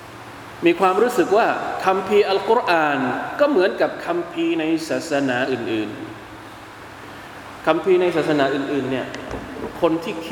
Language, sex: Thai, male